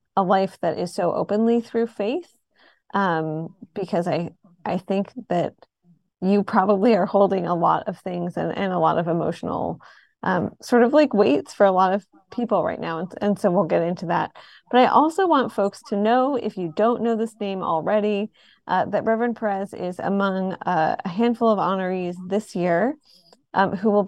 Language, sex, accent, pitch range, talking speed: English, female, American, 180-225 Hz, 190 wpm